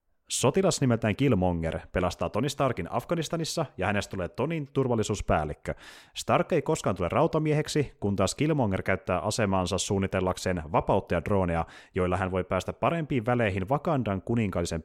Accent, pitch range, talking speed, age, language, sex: native, 95-125 Hz, 135 wpm, 30-49, Finnish, male